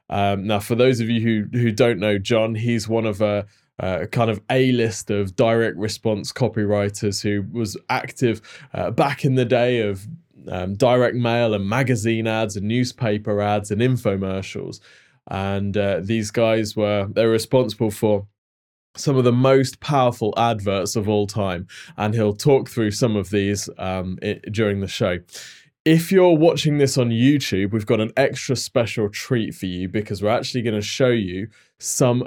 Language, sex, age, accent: English, male, 20-39, British